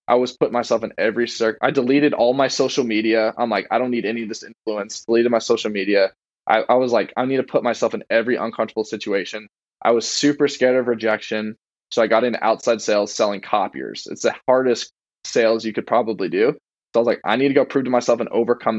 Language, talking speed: English, 235 wpm